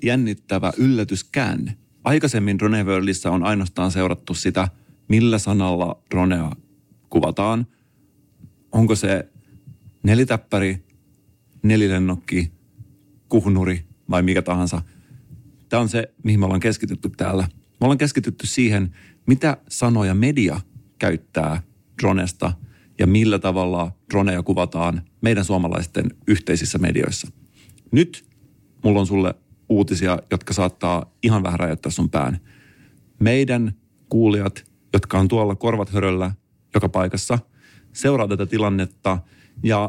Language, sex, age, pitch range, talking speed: Finnish, male, 40-59, 95-115 Hz, 105 wpm